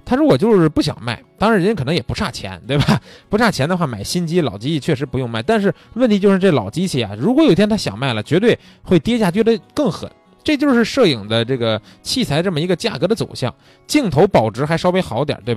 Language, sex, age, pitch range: Chinese, male, 20-39, 115-180 Hz